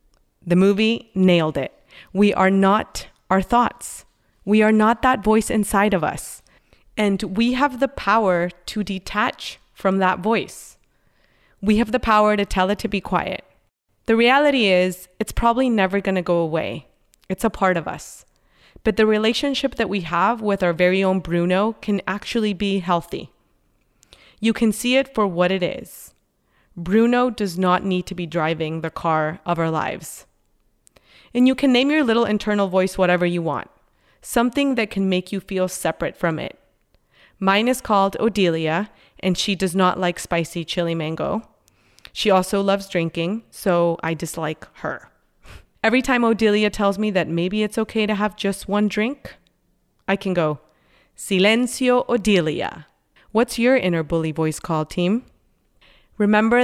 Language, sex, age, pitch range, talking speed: English, female, 30-49, 175-220 Hz, 165 wpm